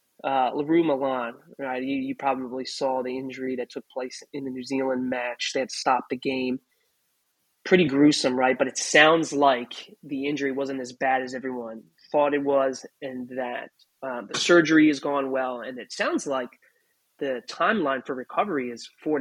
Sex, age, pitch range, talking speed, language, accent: male, 20-39, 130-145 Hz, 180 wpm, English, American